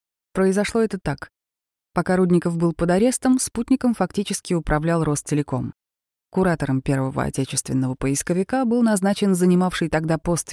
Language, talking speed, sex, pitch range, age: Russian, 120 wpm, female, 140-180 Hz, 20-39